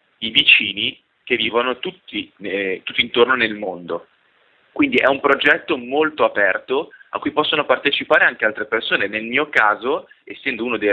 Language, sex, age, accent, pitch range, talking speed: Italian, male, 20-39, native, 105-145 Hz, 160 wpm